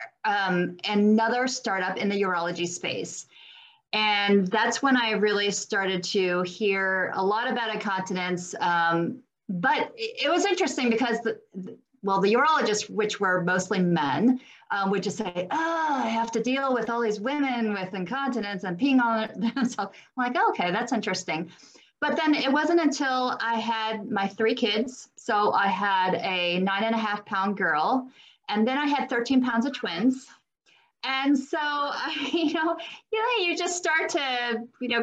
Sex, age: female, 30-49